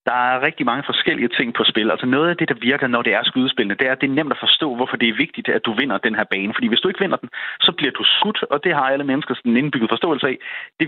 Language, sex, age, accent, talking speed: Danish, male, 30-49, native, 315 wpm